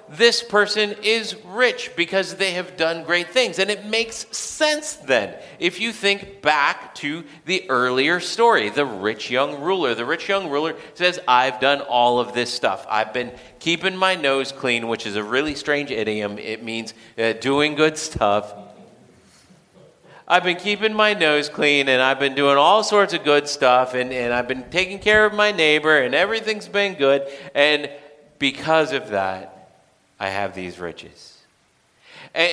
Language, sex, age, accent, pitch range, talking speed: English, male, 40-59, American, 120-185 Hz, 170 wpm